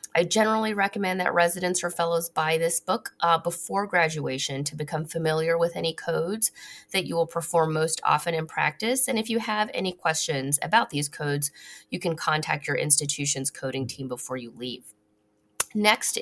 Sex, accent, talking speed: female, American, 175 wpm